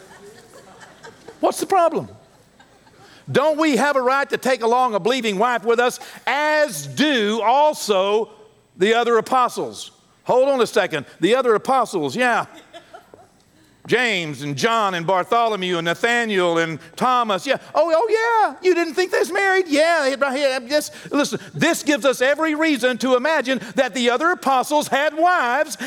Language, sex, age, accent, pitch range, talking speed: English, male, 60-79, American, 215-310 Hz, 150 wpm